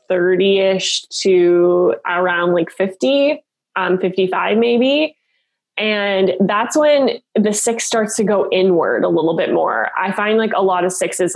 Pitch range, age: 180-210 Hz, 20-39